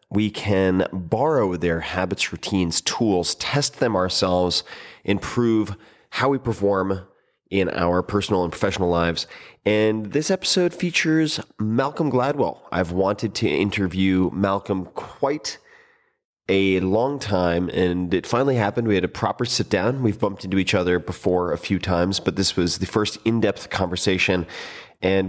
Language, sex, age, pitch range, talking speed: English, male, 30-49, 90-115 Hz, 145 wpm